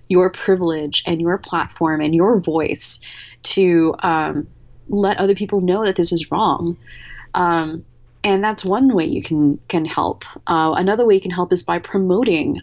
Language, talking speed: English, 170 wpm